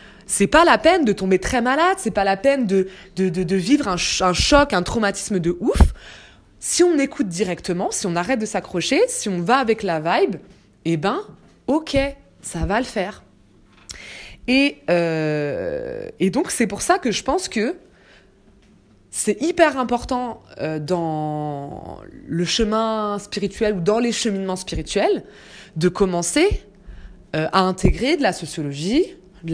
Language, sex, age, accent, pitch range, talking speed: French, female, 20-39, French, 175-265 Hz, 160 wpm